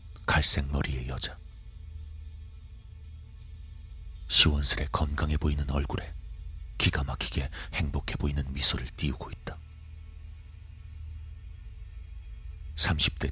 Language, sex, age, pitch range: Korean, male, 40-59, 75-80 Hz